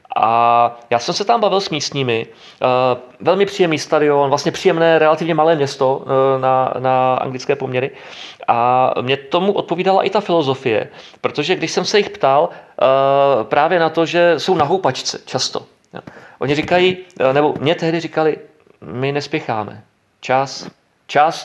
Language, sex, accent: Czech, male, native